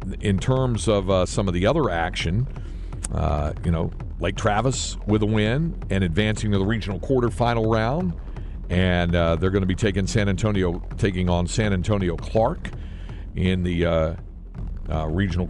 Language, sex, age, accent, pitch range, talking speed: English, male, 50-69, American, 85-120 Hz, 165 wpm